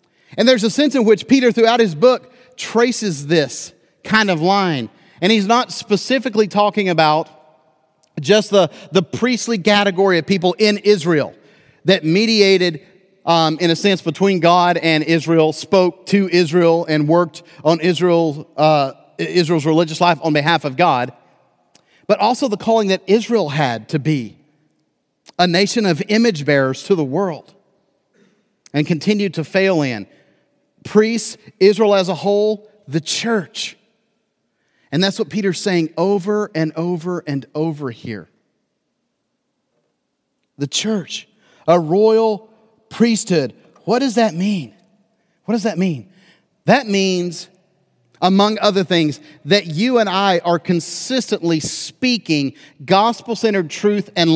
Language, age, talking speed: English, 40-59, 135 wpm